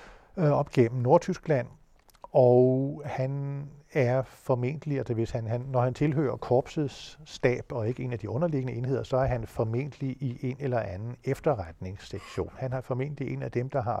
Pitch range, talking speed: 110-135 Hz, 170 wpm